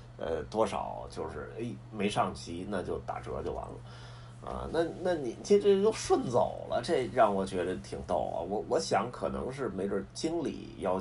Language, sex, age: Chinese, male, 30-49